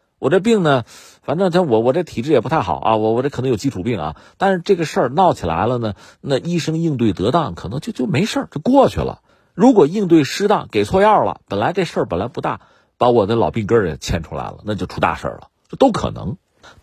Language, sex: Chinese, male